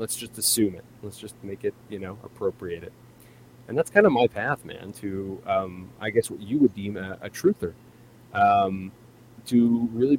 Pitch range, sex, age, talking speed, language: 100-125 Hz, male, 30-49, 195 wpm, English